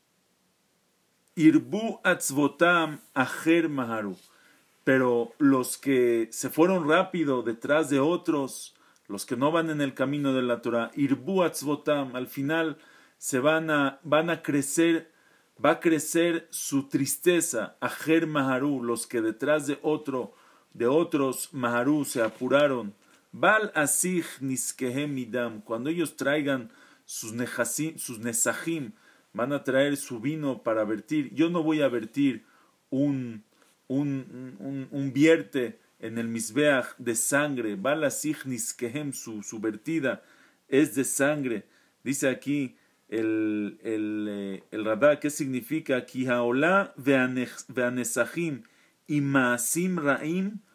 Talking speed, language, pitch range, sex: 120 wpm, English, 125-155 Hz, male